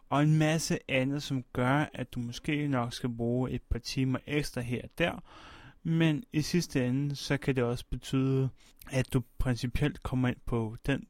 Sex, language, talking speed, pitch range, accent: male, Danish, 190 wpm, 115-140 Hz, native